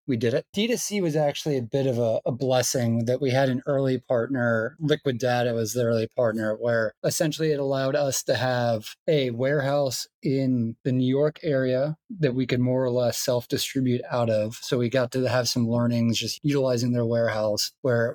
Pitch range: 120-145 Hz